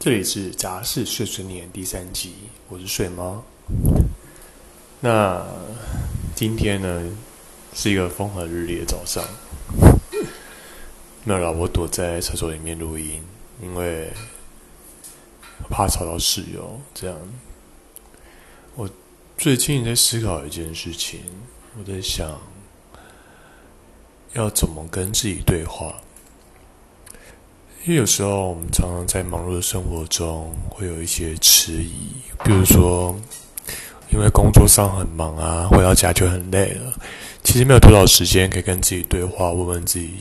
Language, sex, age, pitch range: Chinese, male, 20-39, 85-105 Hz